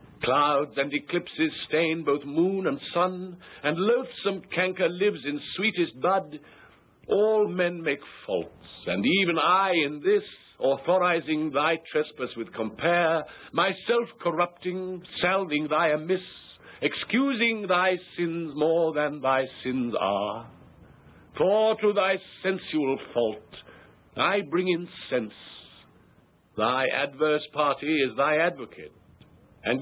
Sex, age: male, 60-79